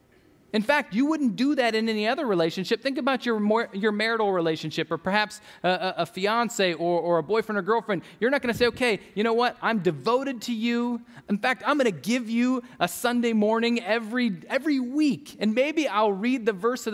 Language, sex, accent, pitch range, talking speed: English, male, American, 200-245 Hz, 220 wpm